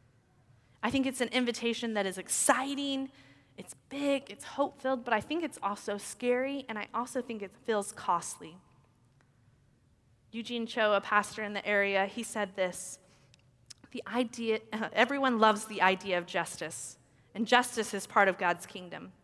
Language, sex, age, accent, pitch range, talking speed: English, female, 30-49, American, 185-255 Hz, 155 wpm